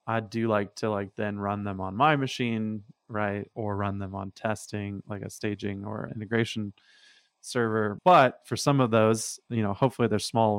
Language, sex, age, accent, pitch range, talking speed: English, male, 20-39, American, 100-115 Hz, 185 wpm